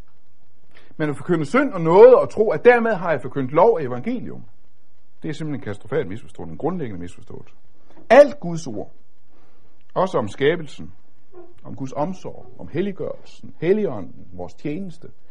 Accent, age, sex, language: native, 60-79, male, Danish